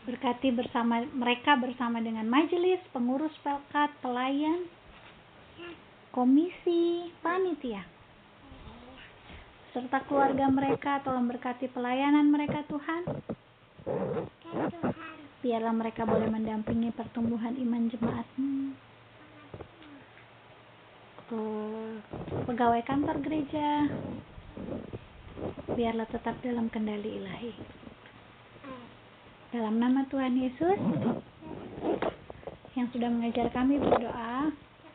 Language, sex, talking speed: Indonesian, female, 75 wpm